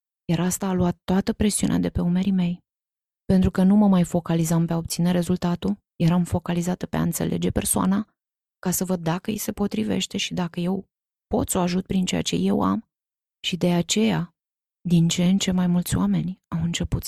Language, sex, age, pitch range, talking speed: Romanian, female, 20-39, 165-195 Hz, 200 wpm